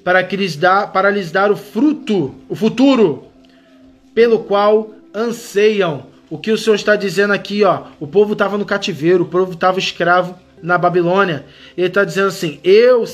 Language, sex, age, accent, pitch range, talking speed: Portuguese, male, 20-39, Brazilian, 180-235 Hz, 180 wpm